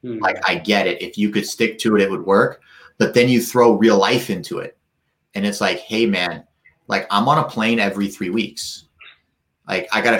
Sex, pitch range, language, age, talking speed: male, 110-155 Hz, English, 30-49, 225 wpm